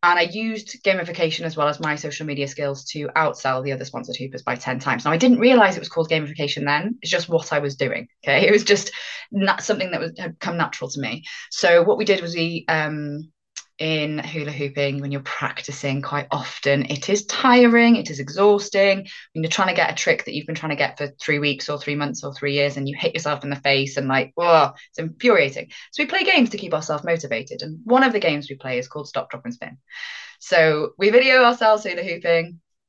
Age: 20-39